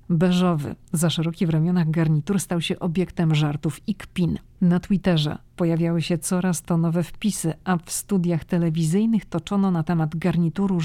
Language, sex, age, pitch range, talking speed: Polish, female, 40-59, 155-185 Hz, 155 wpm